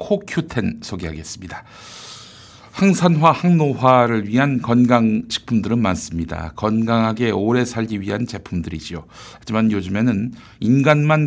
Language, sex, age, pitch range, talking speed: English, male, 60-79, 105-145 Hz, 80 wpm